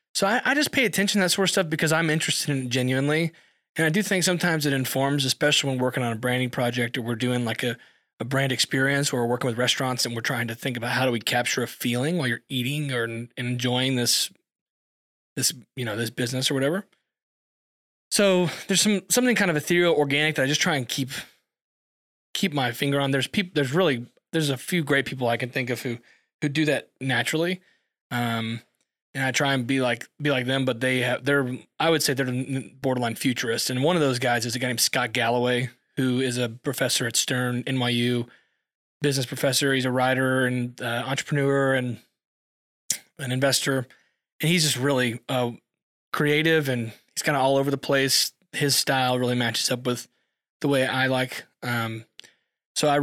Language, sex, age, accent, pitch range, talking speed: English, male, 20-39, American, 125-145 Hz, 205 wpm